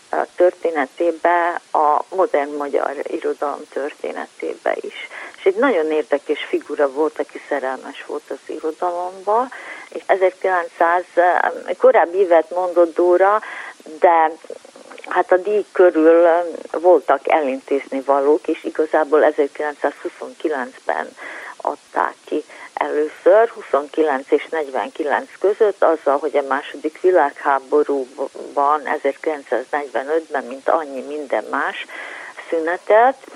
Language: Hungarian